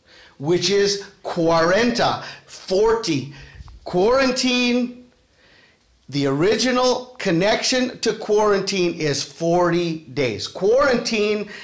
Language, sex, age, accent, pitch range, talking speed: English, male, 50-69, American, 160-215 Hz, 75 wpm